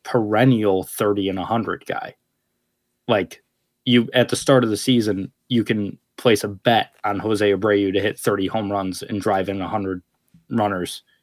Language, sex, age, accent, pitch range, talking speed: English, male, 20-39, American, 100-125 Hz, 170 wpm